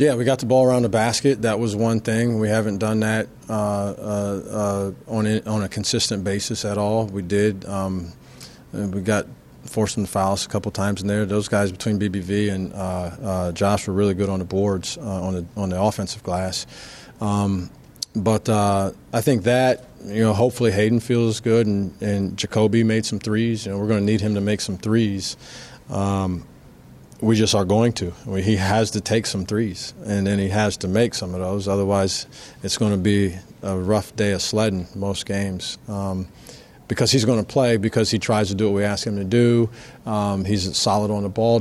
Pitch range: 100-110 Hz